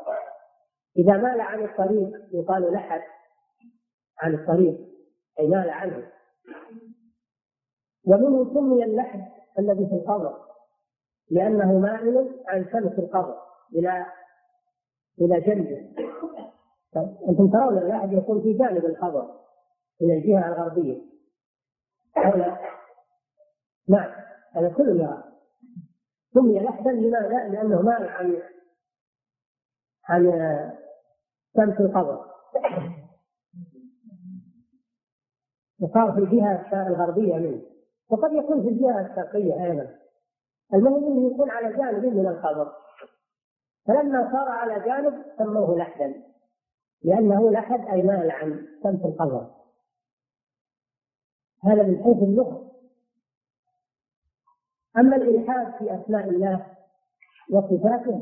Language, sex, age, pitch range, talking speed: Arabic, female, 40-59, 180-250 Hz, 95 wpm